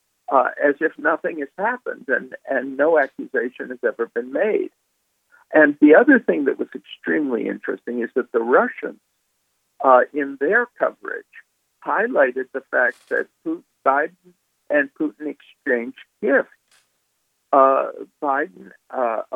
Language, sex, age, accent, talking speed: English, male, 60-79, American, 135 wpm